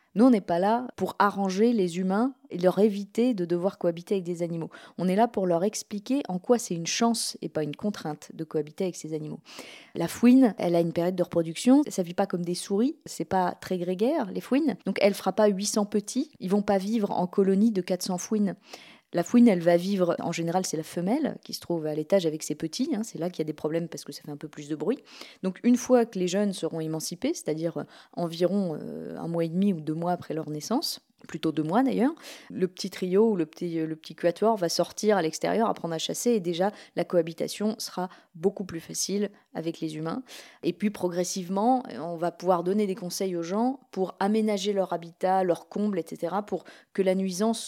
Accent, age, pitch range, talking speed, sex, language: French, 20-39, 170-220 Hz, 230 wpm, female, French